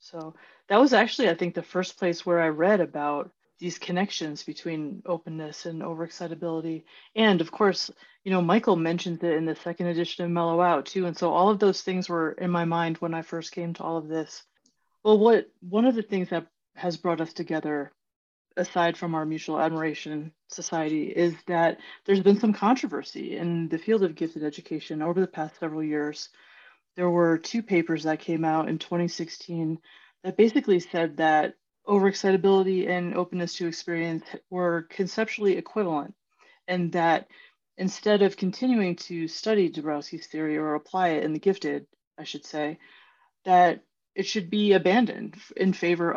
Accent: American